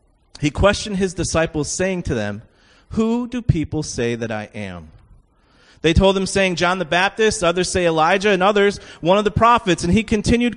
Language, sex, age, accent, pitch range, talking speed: English, male, 30-49, American, 135-220 Hz, 185 wpm